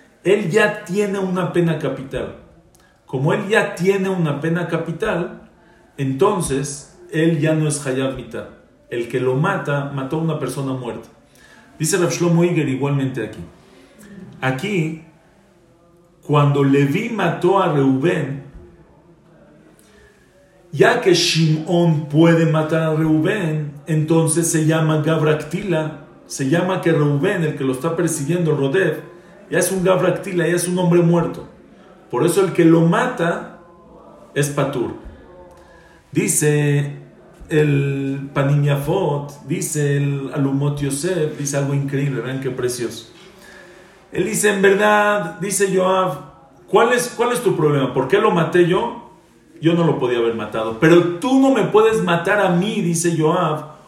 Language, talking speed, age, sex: English, 135 wpm, 40-59, male